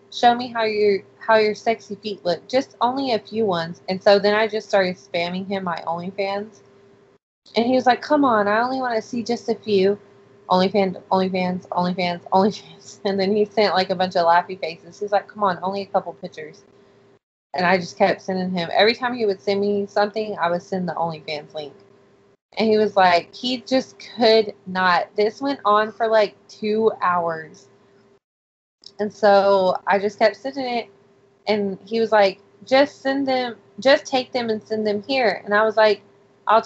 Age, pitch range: 20-39, 190-220 Hz